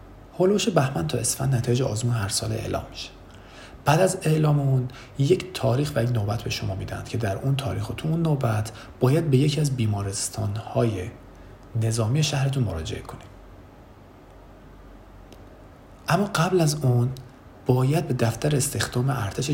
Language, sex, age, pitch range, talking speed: Persian, male, 40-59, 100-130 Hz, 150 wpm